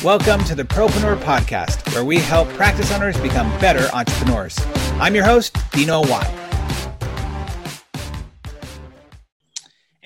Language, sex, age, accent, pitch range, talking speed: English, male, 30-49, American, 115-150 Hz, 105 wpm